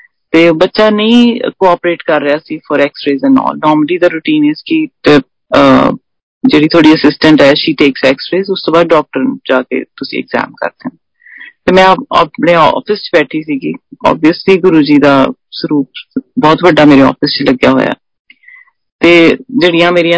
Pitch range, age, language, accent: 165-245 Hz, 40-59, Hindi, native